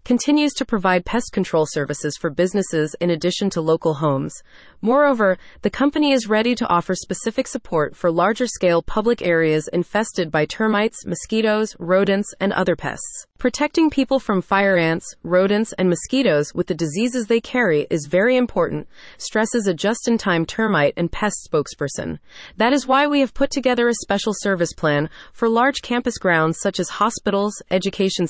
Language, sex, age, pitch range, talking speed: English, female, 30-49, 175-235 Hz, 165 wpm